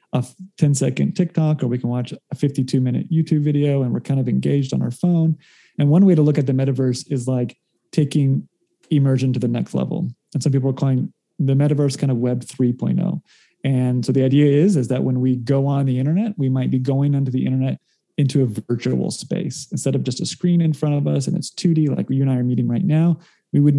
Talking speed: 235 wpm